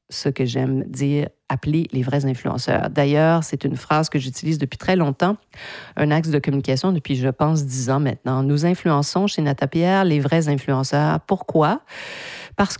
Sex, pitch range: female, 140-190 Hz